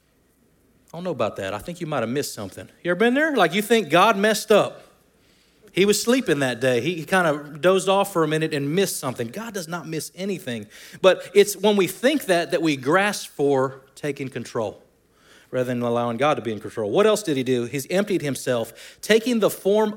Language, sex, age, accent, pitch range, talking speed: English, male, 30-49, American, 140-210 Hz, 220 wpm